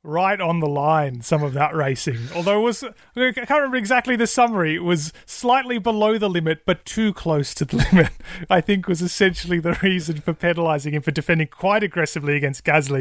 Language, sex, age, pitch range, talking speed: English, male, 30-49, 150-205 Hz, 205 wpm